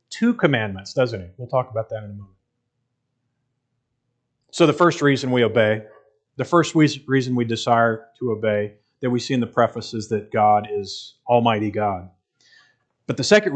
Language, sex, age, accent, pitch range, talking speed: English, male, 40-59, American, 115-135 Hz, 175 wpm